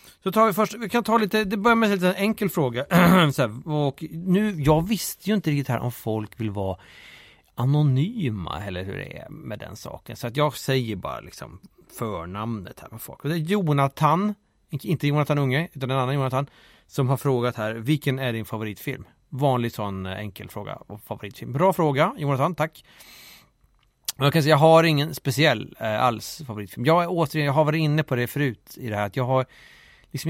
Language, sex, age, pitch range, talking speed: Swedish, male, 30-49, 125-165 Hz, 205 wpm